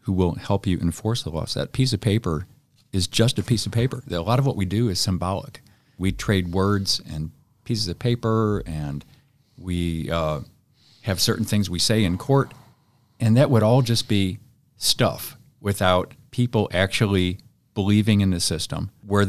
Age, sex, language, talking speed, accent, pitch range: 50-69, male, English, 175 wpm, American, 95-120 Hz